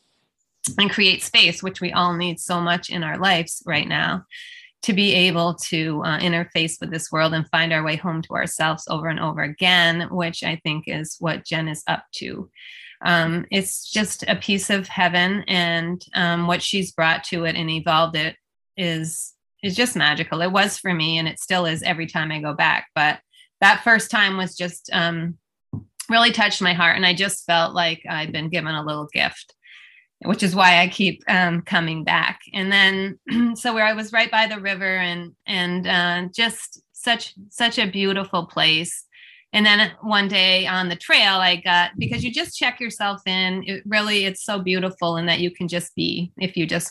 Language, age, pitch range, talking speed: English, 30-49, 165-195 Hz, 200 wpm